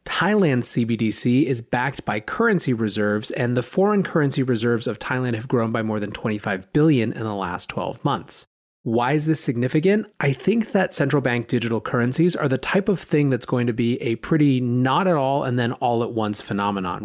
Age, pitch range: 30-49, 115-150 Hz